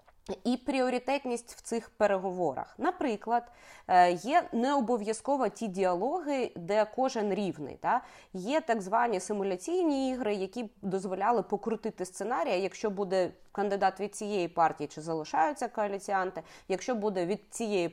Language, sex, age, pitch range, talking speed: Ukrainian, female, 20-39, 195-255 Hz, 125 wpm